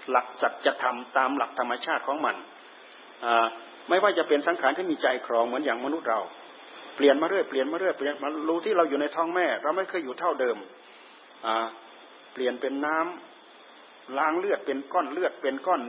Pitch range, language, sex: 135-180 Hz, Thai, male